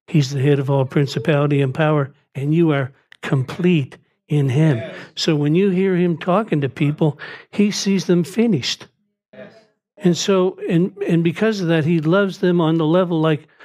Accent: American